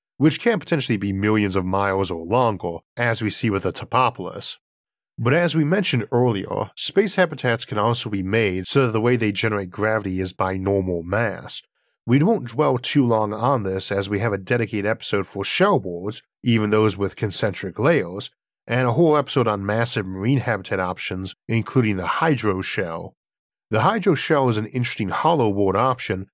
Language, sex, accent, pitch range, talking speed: English, male, American, 100-125 Hz, 180 wpm